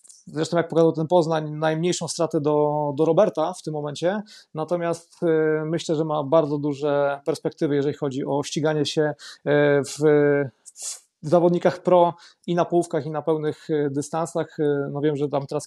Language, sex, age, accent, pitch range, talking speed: Polish, male, 30-49, native, 145-170 Hz, 155 wpm